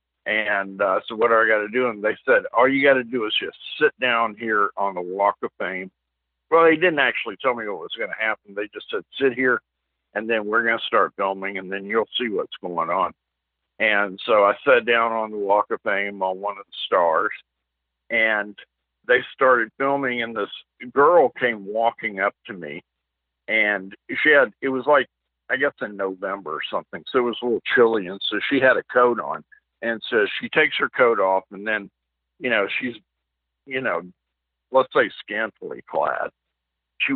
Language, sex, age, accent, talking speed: English, male, 50-69, American, 205 wpm